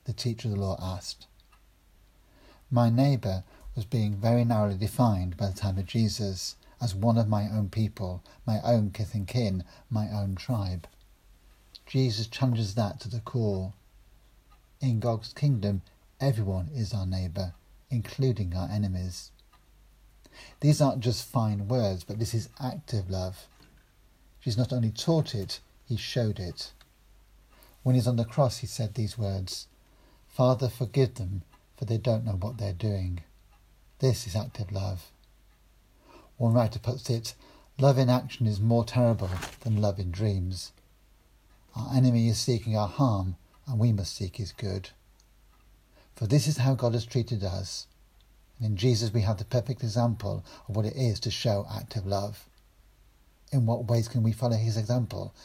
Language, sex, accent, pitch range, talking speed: English, male, British, 95-120 Hz, 160 wpm